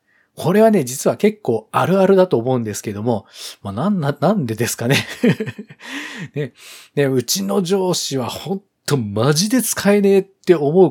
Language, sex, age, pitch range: Japanese, male, 40-59, 130-205 Hz